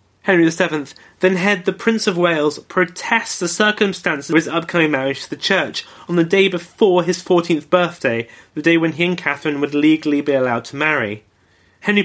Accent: British